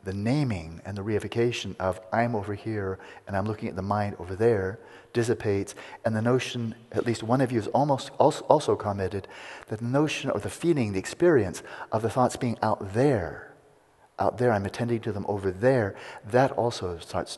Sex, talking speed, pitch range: male, 185 wpm, 95-120 Hz